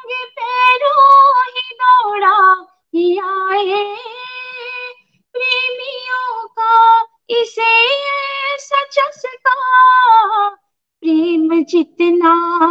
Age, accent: 20-39, native